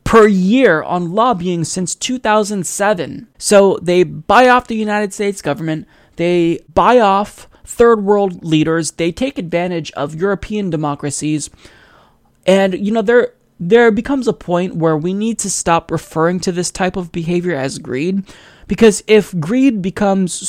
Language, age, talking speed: English, 20-39, 150 wpm